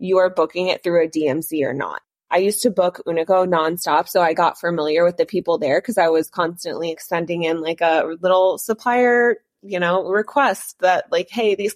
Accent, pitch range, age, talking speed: American, 165-205 Hz, 20-39, 205 wpm